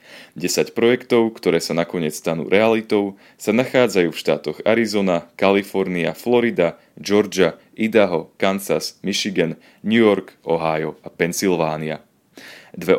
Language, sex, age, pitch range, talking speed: Slovak, male, 30-49, 85-115 Hz, 110 wpm